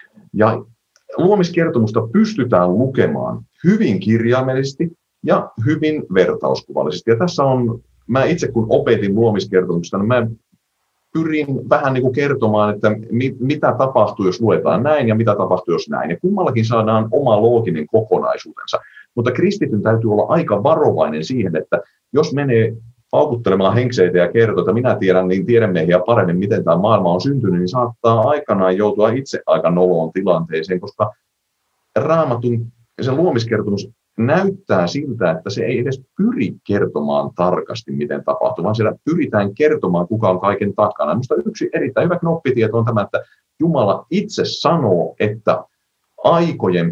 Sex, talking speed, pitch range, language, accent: male, 145 wpm, 100-135 Hz, Finnish, native